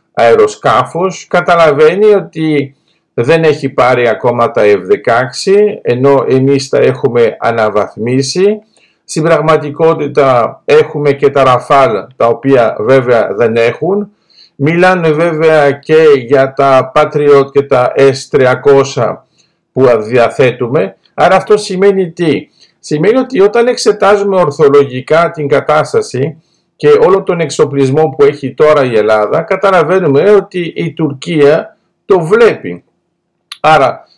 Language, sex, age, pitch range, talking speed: Greek, male, 50-69, 140-190 Hz, 110 wpm